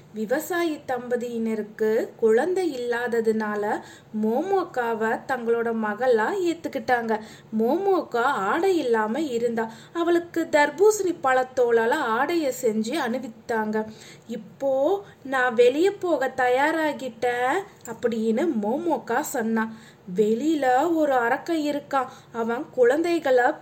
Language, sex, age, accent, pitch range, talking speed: Tamil, female, 20-39, native, 230-335 Hz, 80 wpm